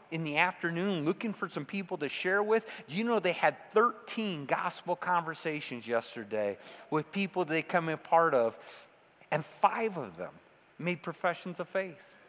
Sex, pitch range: male, 160-225 Hz